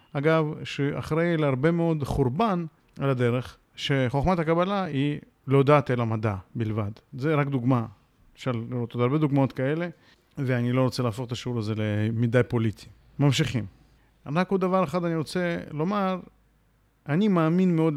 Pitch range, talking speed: 120-160 Hz, 150 wpm